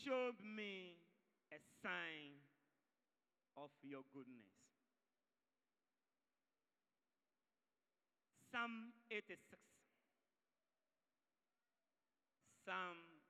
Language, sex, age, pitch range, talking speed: English, male, 50-69, 175-225 Hz, 45 wpm